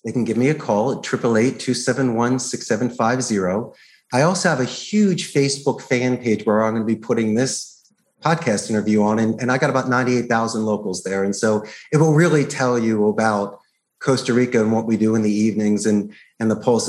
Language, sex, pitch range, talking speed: English, male, 115-140 Hz, 195 wpm